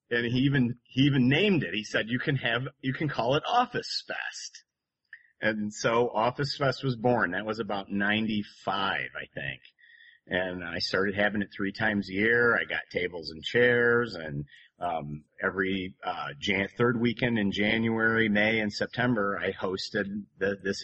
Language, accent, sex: English, American, male